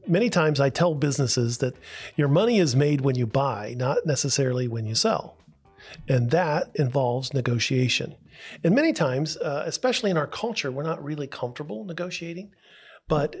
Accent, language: American, English